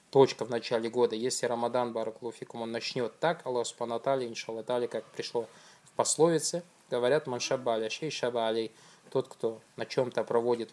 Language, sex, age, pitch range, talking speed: Russian, male, 20-39, 115-135 Hz, 140 wpm